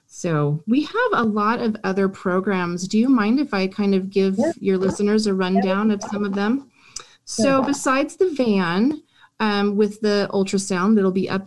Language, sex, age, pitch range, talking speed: English, female, 30-49, 180-210 Hz, 190 wpm